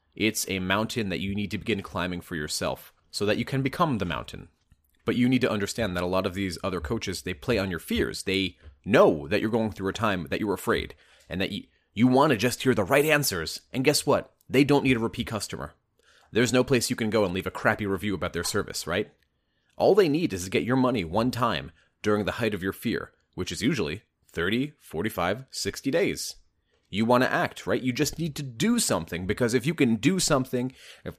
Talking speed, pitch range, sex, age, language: 235 wpm, 85-120 Hz, male, 30-49, English